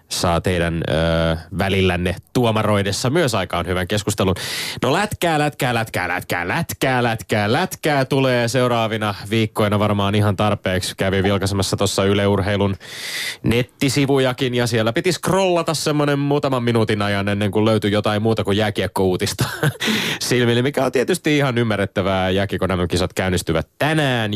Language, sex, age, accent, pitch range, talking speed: Finnish, male, 20-39, native, 95-125 Hz, 130 wpm